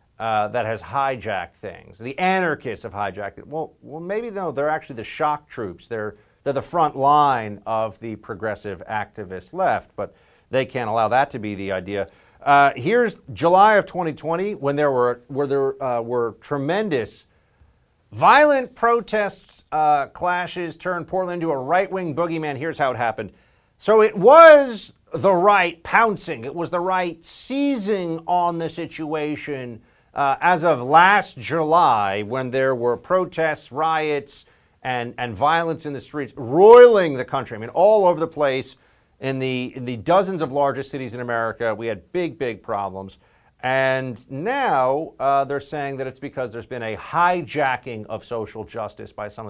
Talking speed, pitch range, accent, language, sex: 165 wpm, 115-175 Hz, American, English, male